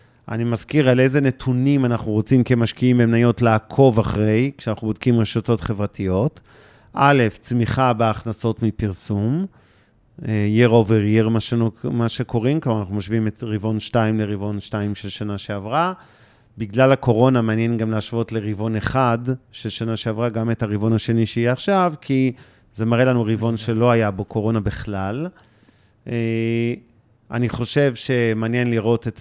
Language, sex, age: Hebrew, male, 40-59